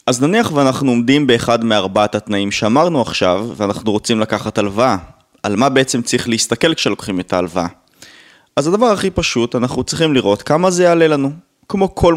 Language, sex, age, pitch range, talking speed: Hebrew, male, 20-39, 110-160 Hz, 170 wpm